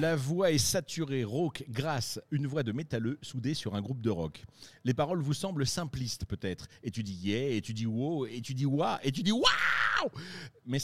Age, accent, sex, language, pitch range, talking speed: 50-69, French, male, French, 105-145 Hz, 220 wpm